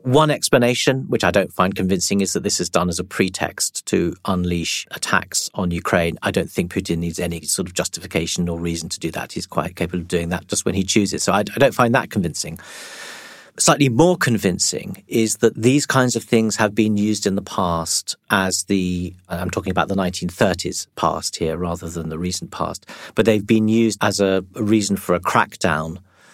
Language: English